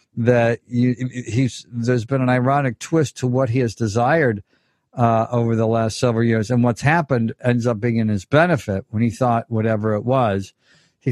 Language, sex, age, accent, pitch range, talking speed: English, male, 50-69, American, 110-145 Hz, 190 wpm